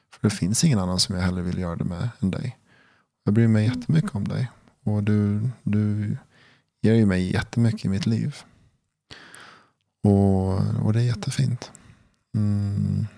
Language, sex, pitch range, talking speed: English, male, 95-115 Hz, 160 wpm